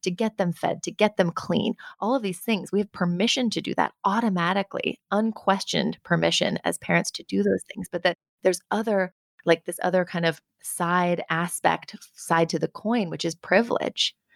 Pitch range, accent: 165-205 Hz, American